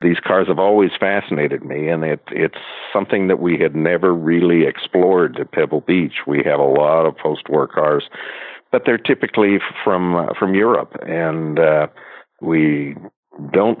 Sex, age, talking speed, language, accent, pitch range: male, 60-79, 160 wpm, English, American, 80-90 Hz